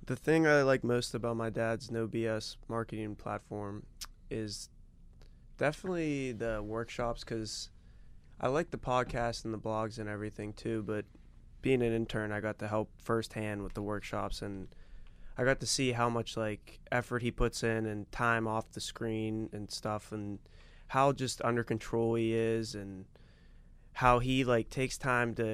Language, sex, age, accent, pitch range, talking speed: English, male, 20-39, American, 105-120 Hz, 170 wpm